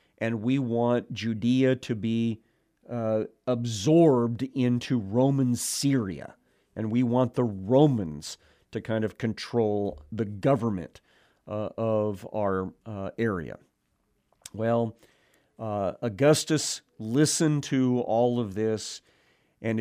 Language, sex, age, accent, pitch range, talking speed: English, male, 50-69, American, 110-130 Hz, 110 wpm